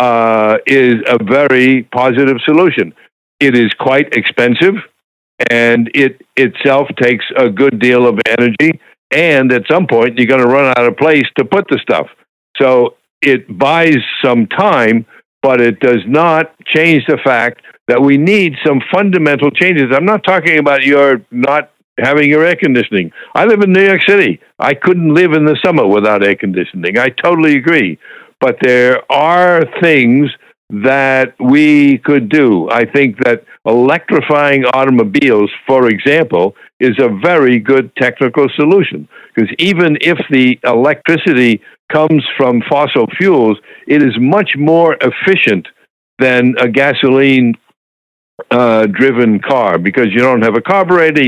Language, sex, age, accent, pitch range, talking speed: English, male, 60-79, American, 120-155 Hz, 145 wpm